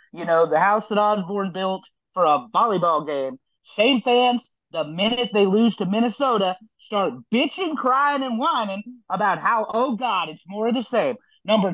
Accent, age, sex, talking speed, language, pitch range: American, 30-49, male, 175 wpm, English, 190-245 Hz